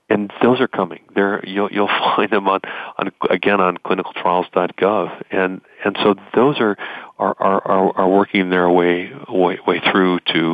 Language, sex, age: English, male, 40-59